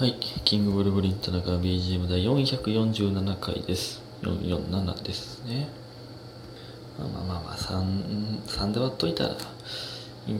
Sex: male